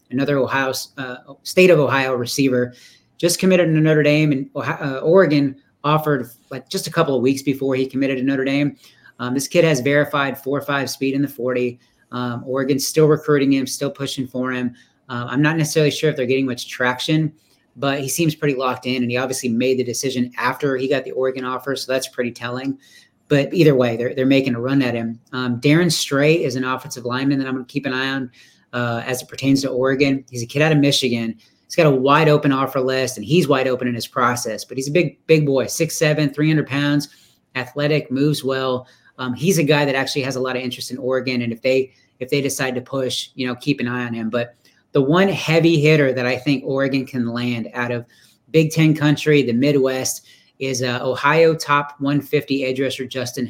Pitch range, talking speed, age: 125-145 Hz, 225 wpm, 30-49